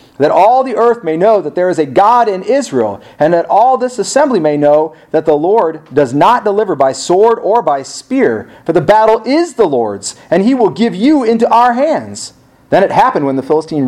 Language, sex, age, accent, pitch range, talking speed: English, male, 40-59, American, 135-210 Hz, 220 wpm